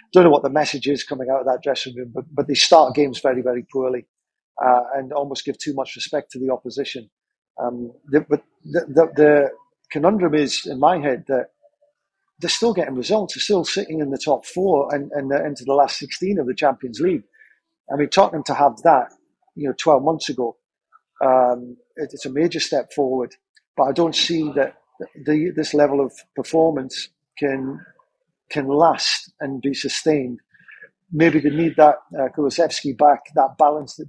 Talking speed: 190 wpm